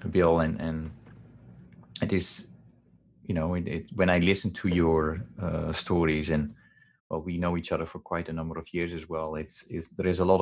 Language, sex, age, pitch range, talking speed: English, male, 30-49, 80-90 Hz, 205 wpm